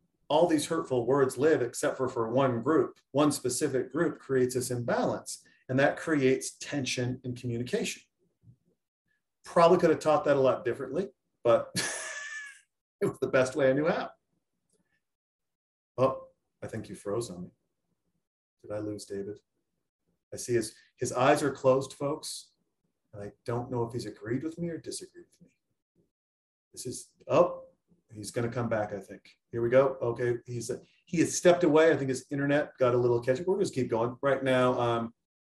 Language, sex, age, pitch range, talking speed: English, male, 40-59, 115-145 Hz, 180 wpm